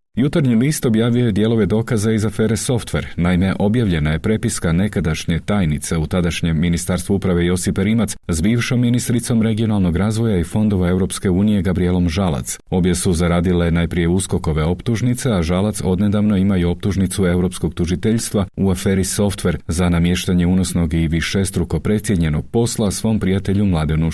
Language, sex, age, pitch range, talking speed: Croatian, male, 40-59, 85-110 Hz, 145 wpm